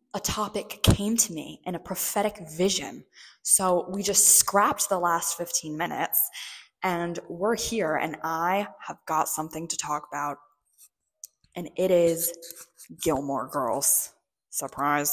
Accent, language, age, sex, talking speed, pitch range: American, English, 10-29, female, 135 wpm, 155-215 Hz